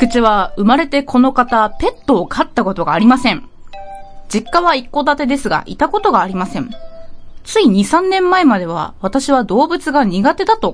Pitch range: 210-330 Hz